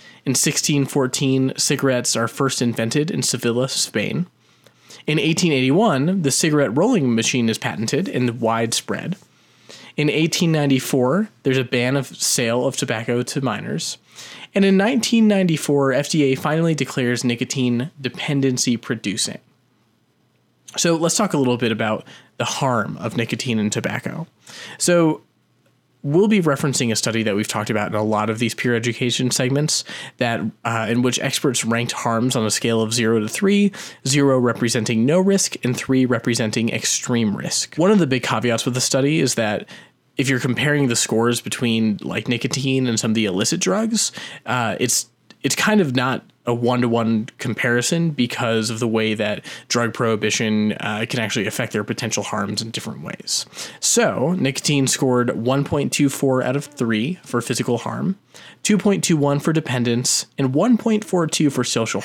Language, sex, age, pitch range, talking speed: English, male, 20-39, 115-145 Hz, 155 wpm